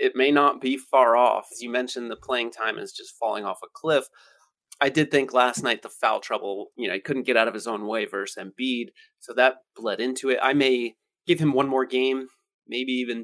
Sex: male